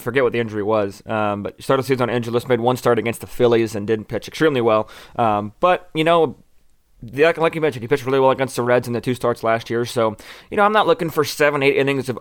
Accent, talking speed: American, 265 wpm